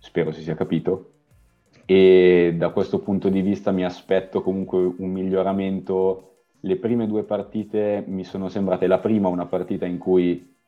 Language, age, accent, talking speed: Italian, 20-39, native, 155 wpm